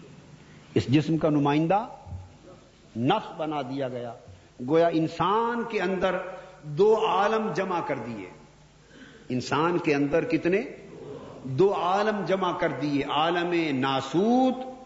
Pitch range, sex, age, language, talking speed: 145-190 Hz, male, 50-69, Urdu, 115 wpm